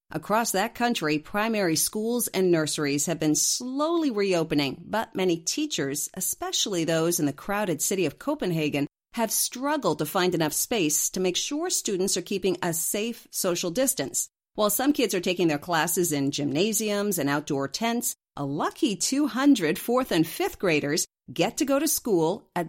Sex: female